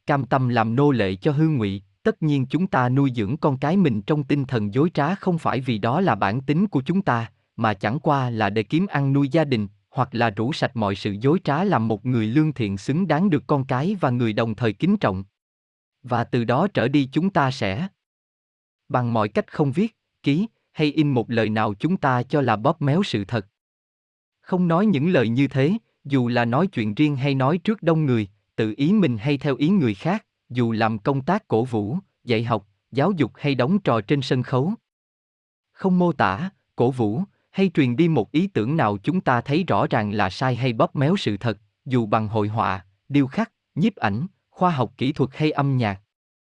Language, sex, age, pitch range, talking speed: Vietnamese, male, 20-39, 115-160 Hz, 220 wpm